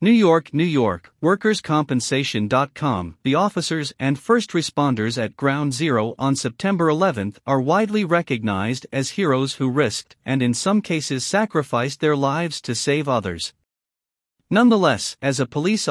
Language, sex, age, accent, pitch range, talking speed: English, male, 50-69, American, 120-170 Hz, 140 wpm